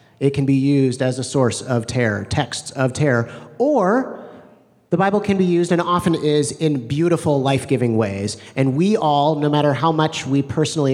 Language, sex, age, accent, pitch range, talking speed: English, male, 30-49, American, 130-160 Hz, 185 wpm